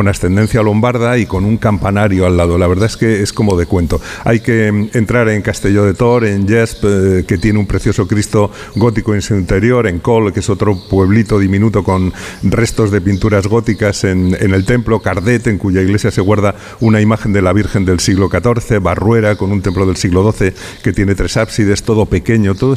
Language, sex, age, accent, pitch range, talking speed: Spanish, male, 50-69, Spanish, 95-115 Hz, 210 wpm